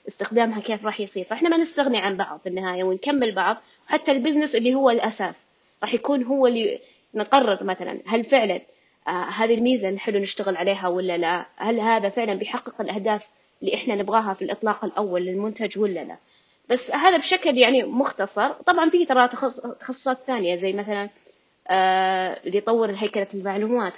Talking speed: 160 wpm